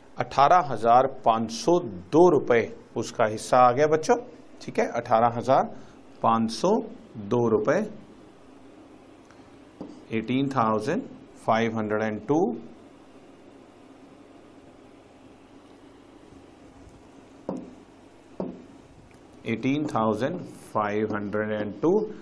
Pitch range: 110-140 Hz